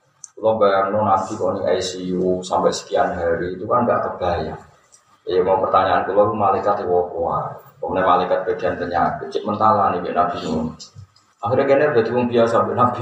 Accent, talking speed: native, 155 wpm